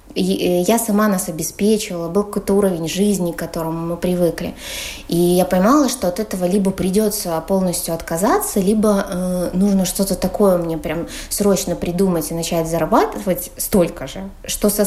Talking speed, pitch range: 155 wpm, 175-220 Hz